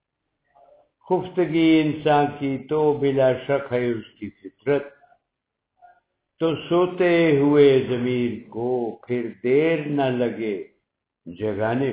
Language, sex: Urdu, male